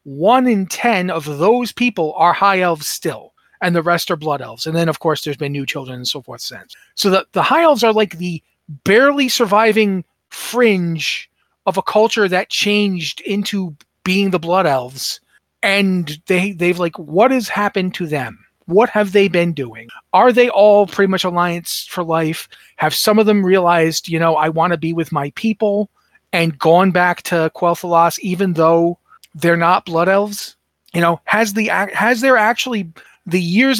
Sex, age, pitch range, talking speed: male, 40-59, 165-205 Hz, 190 wpm